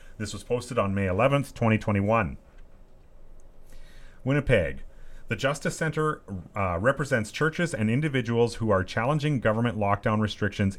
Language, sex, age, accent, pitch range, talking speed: English, male, 30-49, American, 95-125 Hz, 130 wpm